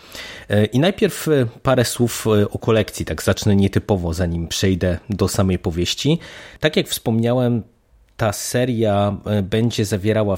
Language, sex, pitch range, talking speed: Polish, male, 95-115 Hz, 120 wpm